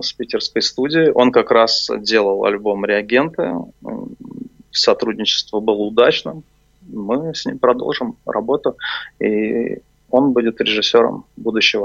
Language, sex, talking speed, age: Russian, male, 110 wpm, 20-39